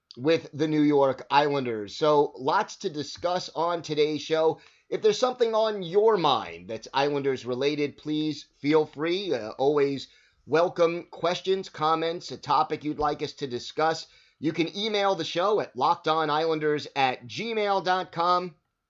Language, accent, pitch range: English, American, 130-160 Hz